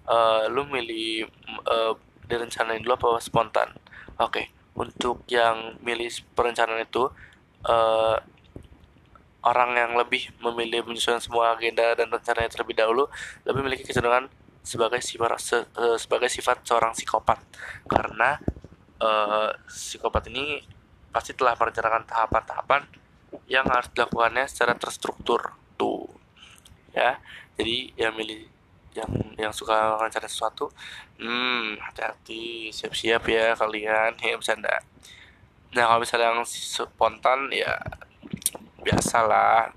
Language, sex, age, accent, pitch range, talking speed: Indonesian, male, 20-39, native, 110-120 Hz, 110 wpm